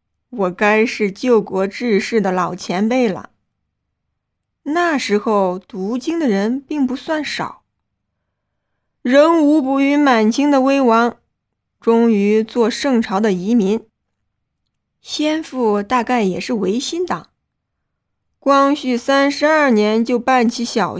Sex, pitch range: female, 205-270 Hz